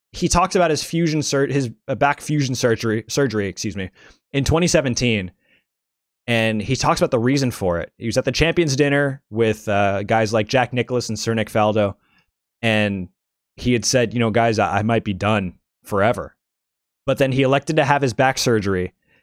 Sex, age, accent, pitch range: male, 20-39, American, 105-135 Hz